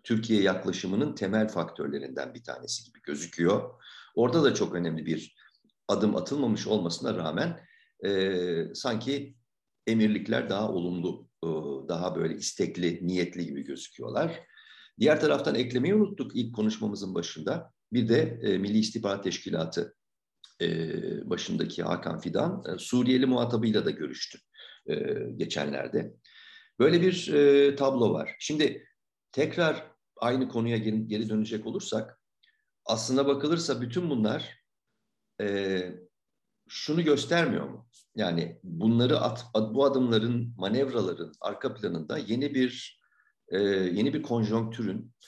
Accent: native